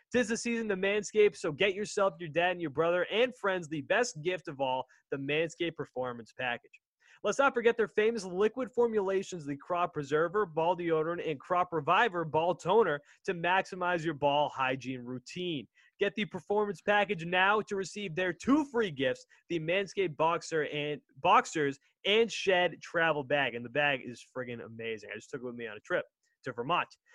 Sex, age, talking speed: male, 20-39, 185 wpm